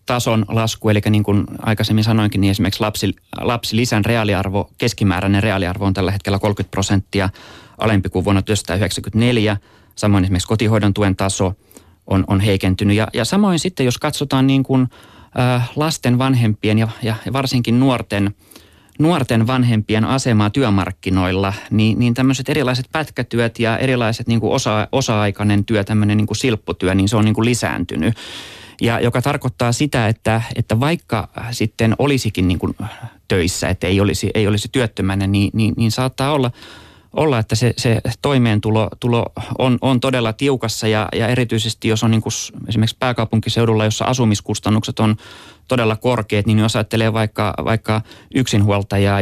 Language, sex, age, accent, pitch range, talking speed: Finnish, male, 30-49, native, 100-120 Hz, 145 wpm